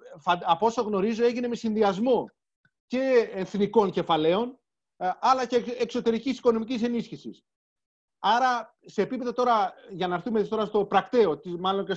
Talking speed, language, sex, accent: 130 wpm, Greek, male, native